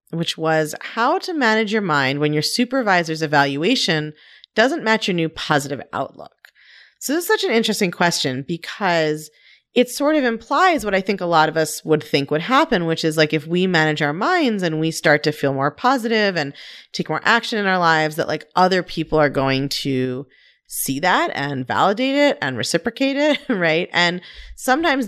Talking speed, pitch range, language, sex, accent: 190 wpm, 150-215 Hz, English, female, American